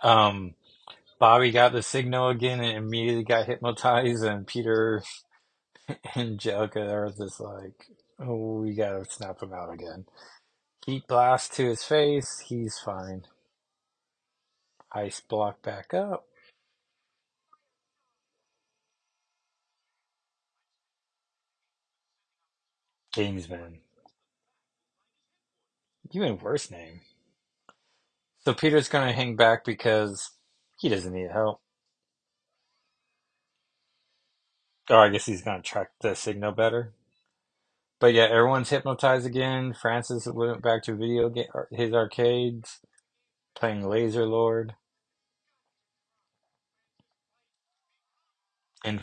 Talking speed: 90 wpm